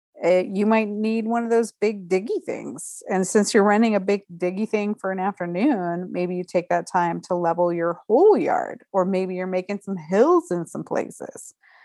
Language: English